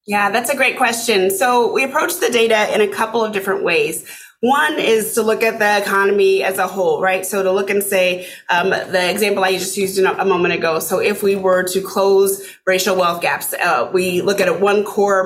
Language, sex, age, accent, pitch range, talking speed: English, female, 30-49, American, 185-225 Hz, 225 wpm